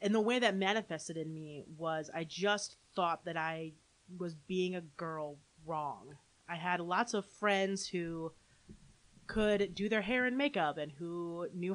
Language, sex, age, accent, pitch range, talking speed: English, female, 30-49, American, 155-195 Hz, 170 wpm